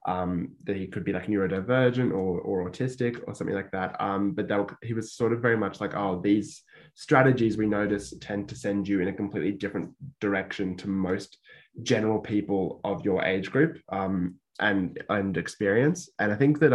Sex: male